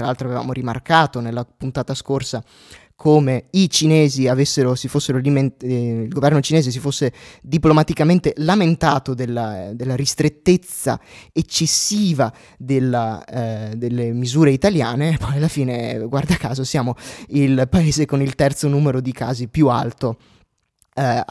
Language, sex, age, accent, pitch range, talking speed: Italian, male, 20-39, native, 130-155 Hz, 130 wpm